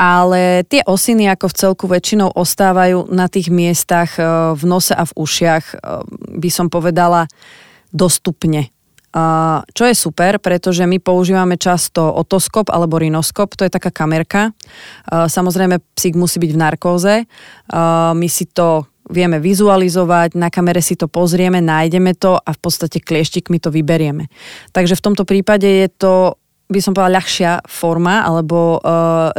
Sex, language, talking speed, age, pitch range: female, Slovak, 145 wpm, 30-49, 165-185 Hz